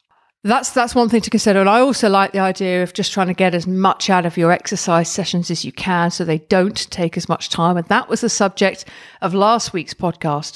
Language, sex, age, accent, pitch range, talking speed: English, female, 40-59, British, 175-230 Hz, 245 wpm